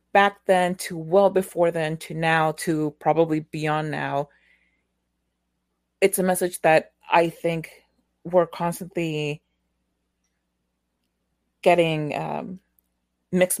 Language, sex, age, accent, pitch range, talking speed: English, female, 30-49, American, 140-175 Hz, 100 wpm